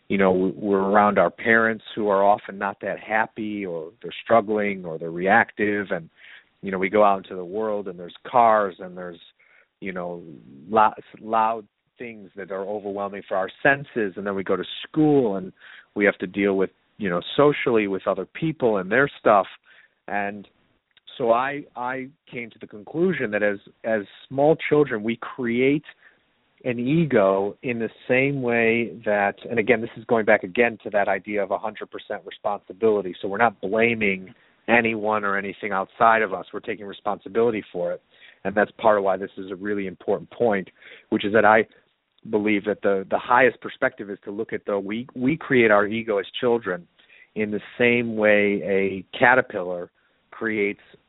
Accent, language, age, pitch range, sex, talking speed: American, English, 40-59, 100-115 Hz, male, 180 wpm